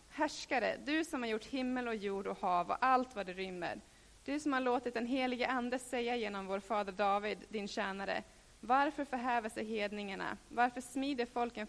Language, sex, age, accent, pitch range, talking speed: Swedish, female, 30-49, native, 210-255 Hz, 185 wpm